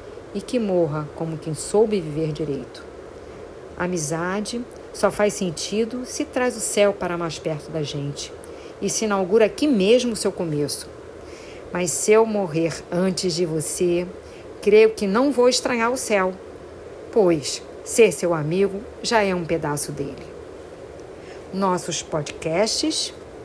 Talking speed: 140 wpm